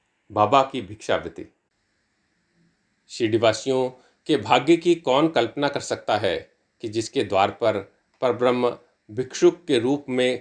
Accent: native